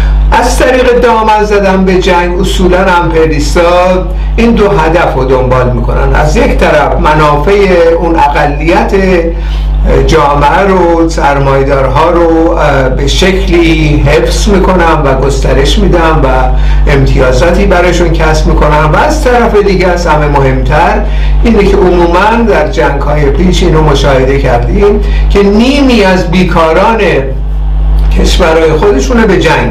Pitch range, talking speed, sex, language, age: 145-190 Hz, 125 wpm, male, Persian, 60-79